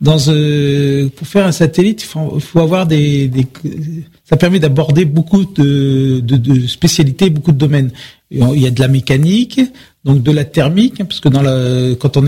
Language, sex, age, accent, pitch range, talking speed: French, male, 40-59, French, 135-170 Hz, 190 wpm